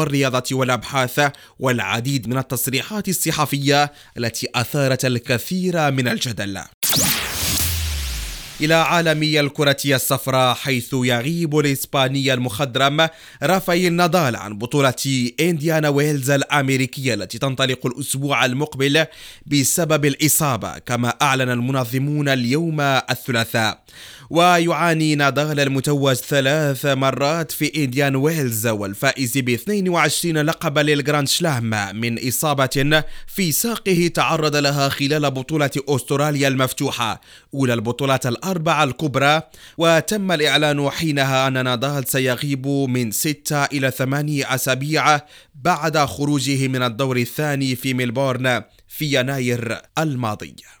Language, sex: French, male